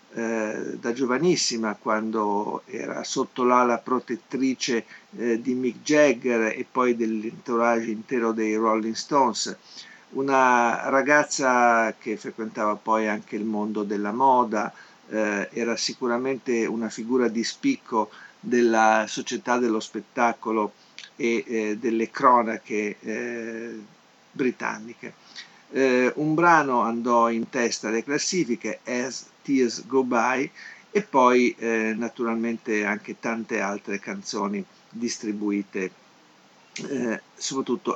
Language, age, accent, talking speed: Italian, 50-69, native, 105 wpm